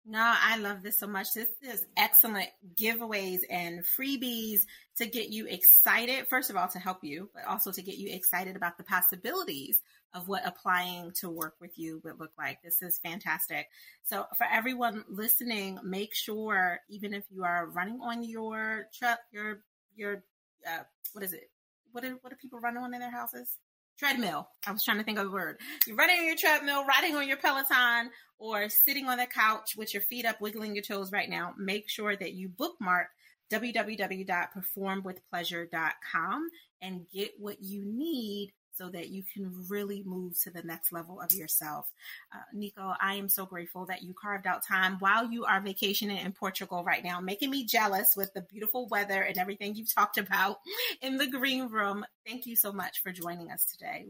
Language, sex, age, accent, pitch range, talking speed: English, female, 30-49, American, 185-235 Hz, 190 wpm